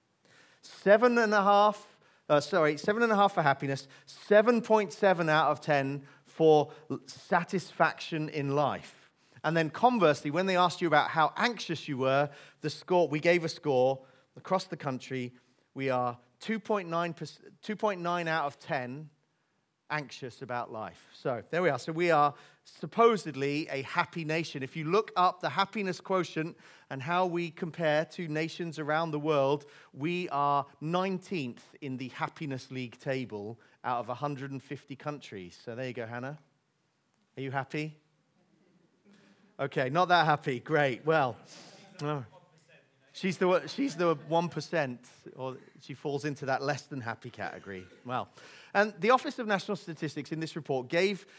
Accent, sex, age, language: British, male, 30-49, English